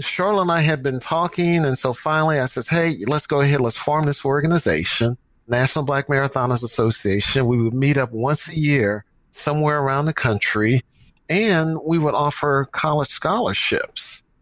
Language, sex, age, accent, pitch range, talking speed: English, male, 50-69, American, 125-150 Hz, 165 wpm